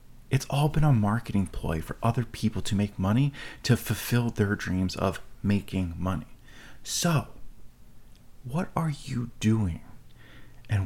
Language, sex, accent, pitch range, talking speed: English, male, American, 95-120 Hz, 140 wpm